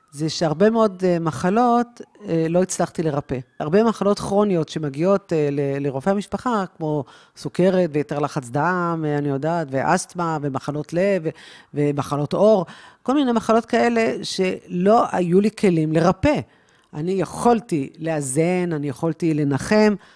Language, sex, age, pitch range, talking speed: Hebrew, female, 40-59, 155-205 Hz, 120 wpm